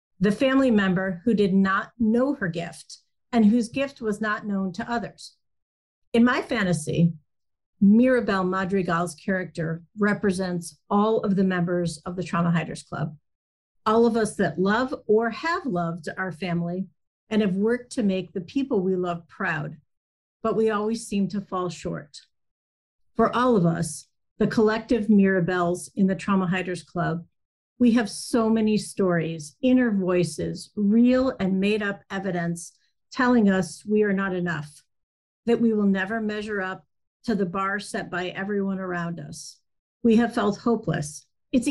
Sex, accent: female, American